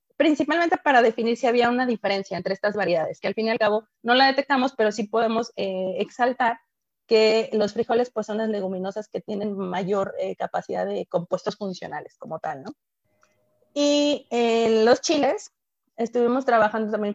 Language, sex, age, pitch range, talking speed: Spanish, female, 30-49, 205-245 Hz, 170 wpm